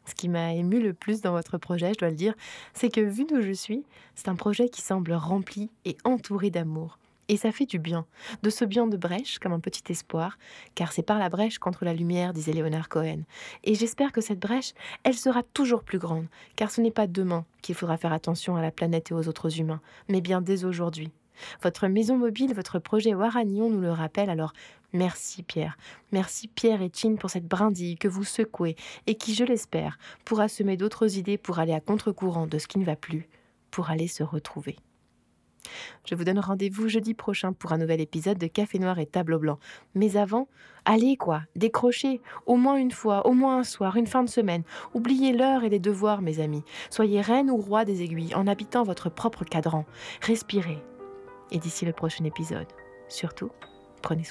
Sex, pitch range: female, 165-220 Hz